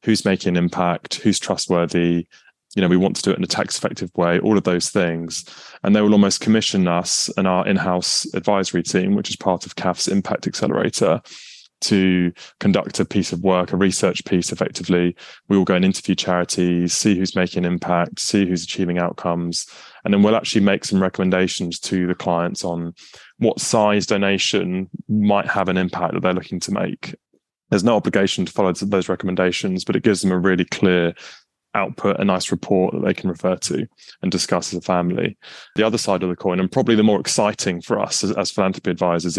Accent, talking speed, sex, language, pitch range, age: British, 200 wpm, male, English, 85-95 Hz, 20-39